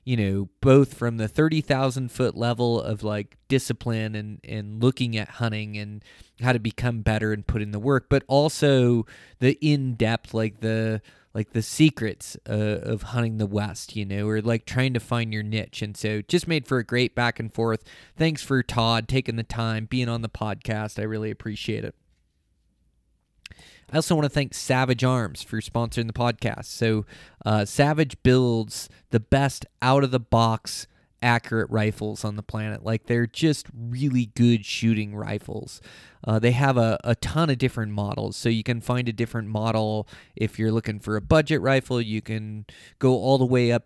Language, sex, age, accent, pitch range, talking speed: English, male, 20-39, American, 110-125 Hz, 185 wpm